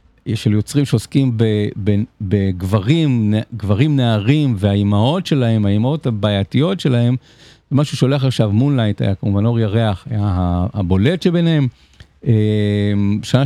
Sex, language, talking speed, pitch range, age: male, Hebrew, 105 wpm, 100-135 Hz, 50-69